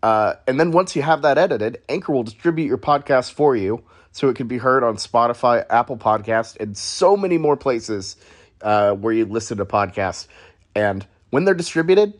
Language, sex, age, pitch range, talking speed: English, male, 30-49, 105-150 Hz, 190 wpm